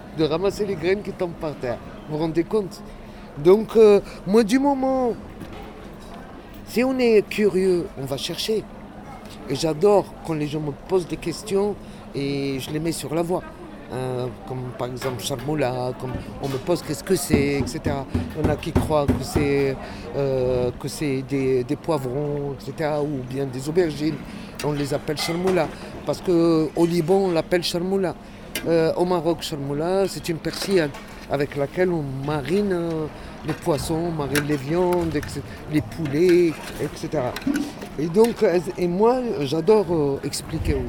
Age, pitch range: 50-69, 140-185 Hz